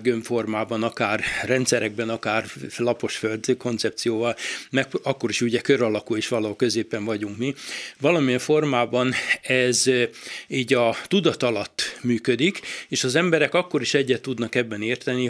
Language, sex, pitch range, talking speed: Hungarian, male, 110-135 Hz, 135 wpm